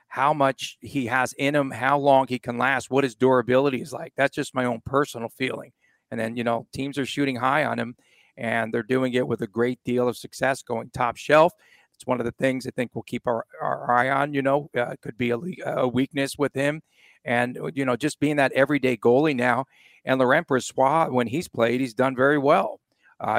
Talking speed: 225 wpm